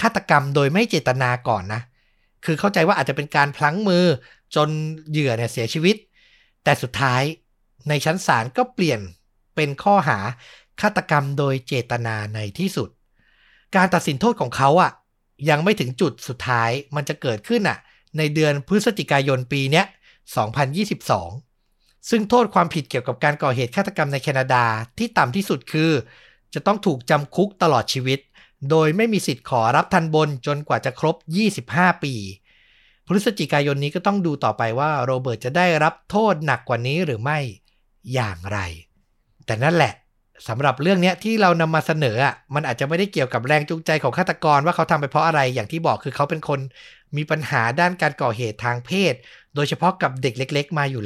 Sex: male